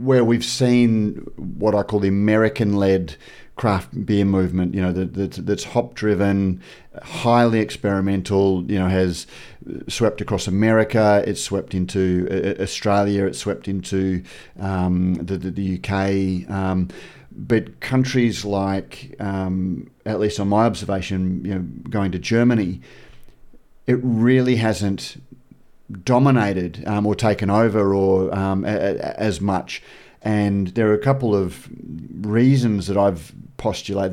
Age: 40-59